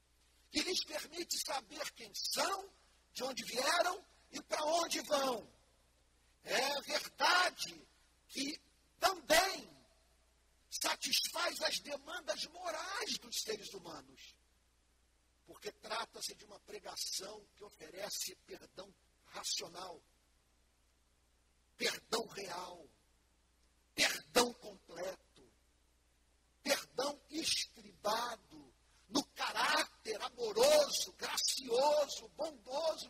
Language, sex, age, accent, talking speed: Portuguese, male, 50-69, Brazilian, 75 wpm